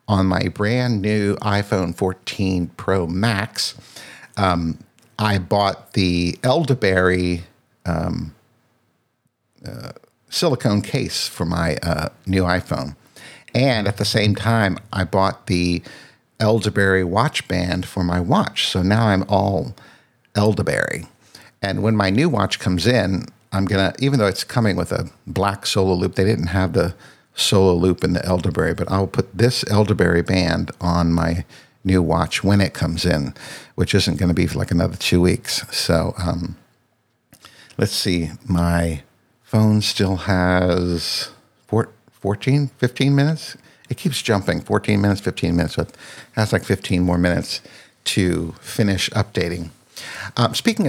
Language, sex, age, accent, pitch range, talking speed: English, male, 60-79, American, 90-110 Hz, 145 wpm